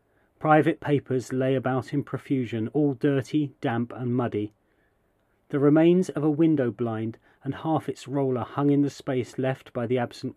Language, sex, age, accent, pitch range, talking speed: English, male, 40-59, British, 120-145 Hz, 170 wpm